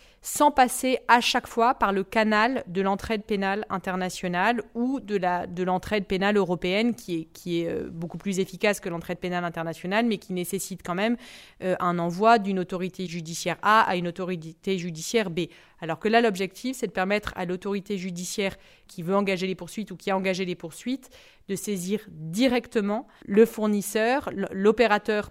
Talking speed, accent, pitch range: 170 wpm, French, 185-225 Hz